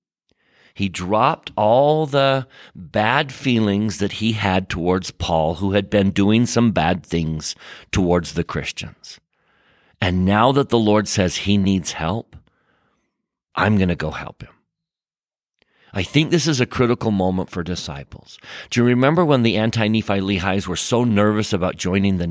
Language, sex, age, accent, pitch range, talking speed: English, male, 50-69, American, 100-145 Hz, 155 wpm